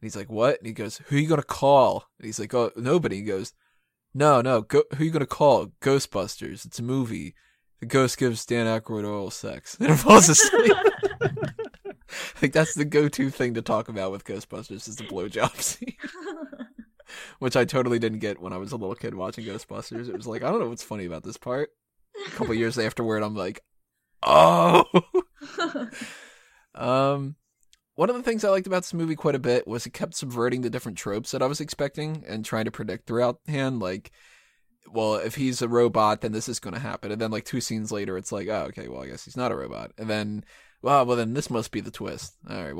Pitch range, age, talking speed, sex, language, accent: 105-150 Hz, 20-39, 225 wpm, male, English, American